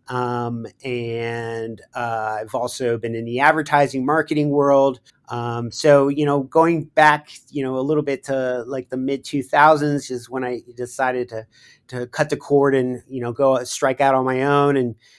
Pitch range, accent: 120-140 Hz, American